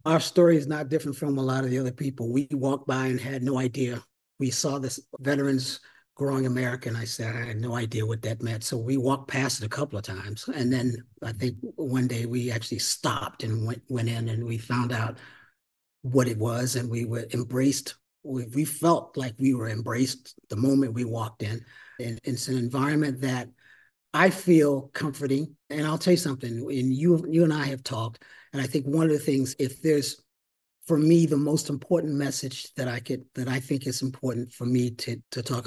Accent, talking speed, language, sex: American, 215 wpm, English, male